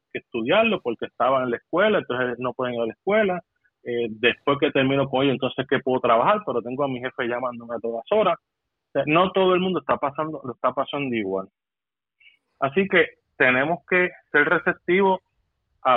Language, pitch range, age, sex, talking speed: Spanish, 120-160 Hz, 30-49, male, 200 wpm